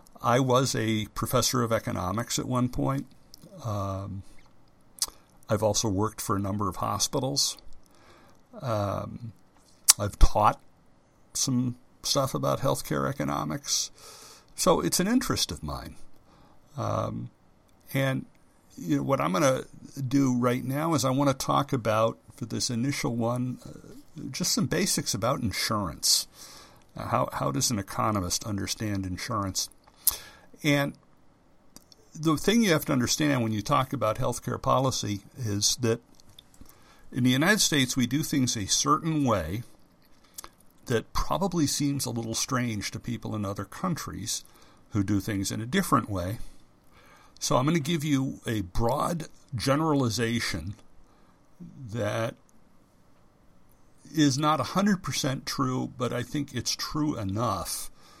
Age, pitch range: 60-79, 105-140 Hz